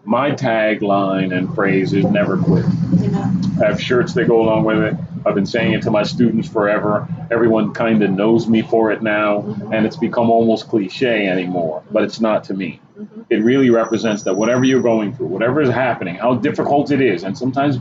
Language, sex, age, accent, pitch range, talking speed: English, male, 40-59, American, 110-145 Hz, 200 wpm